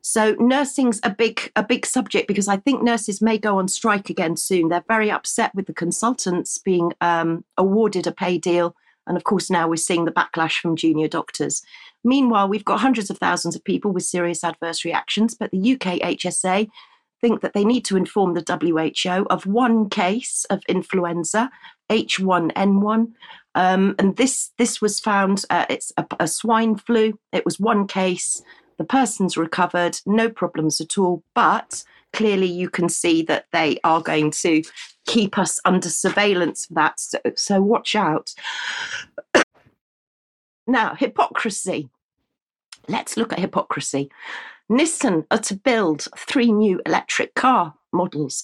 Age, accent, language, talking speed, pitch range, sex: 40-59, British, English, 160 wpm, 175-225 Hz, female